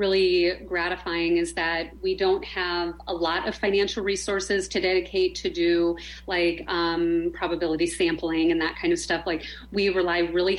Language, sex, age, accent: English, female, 30-49, American